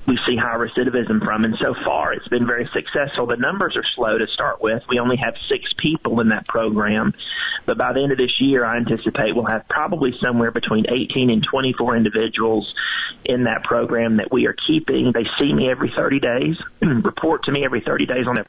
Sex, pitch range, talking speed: male, 110-130 Hz, 215 wpm